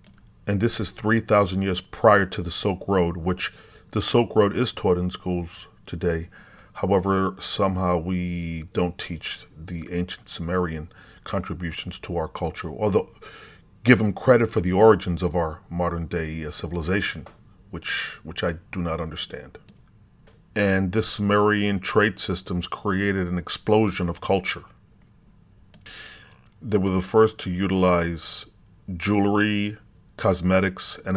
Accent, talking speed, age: American, 130 wpm, 40-59